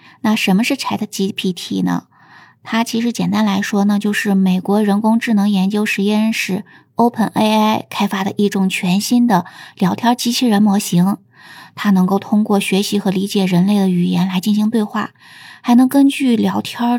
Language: Chinese